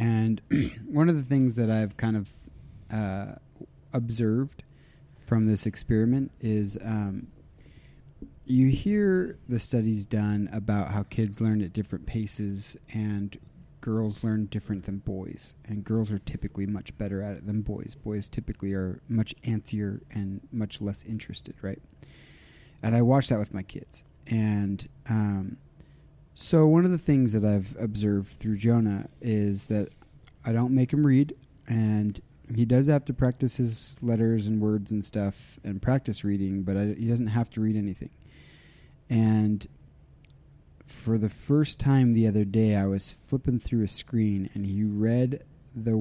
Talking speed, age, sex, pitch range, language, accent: 155 wpm, 30-49, male, 100-125 Hz, English, American